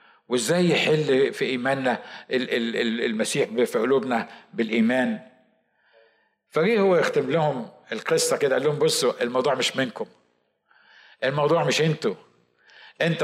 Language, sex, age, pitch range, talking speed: Arabic, male, 50-69, 140-220 Hz, 110 wpm